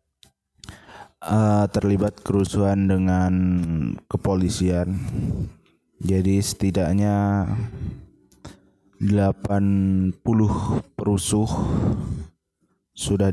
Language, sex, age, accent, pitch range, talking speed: Indonesian, male, 20-39, native, 95-105 Hz, 45 wpm